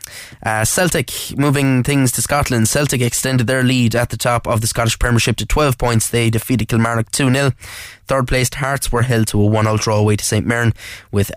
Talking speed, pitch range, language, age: 200 wpm, 105-120 Hz, English, 10-29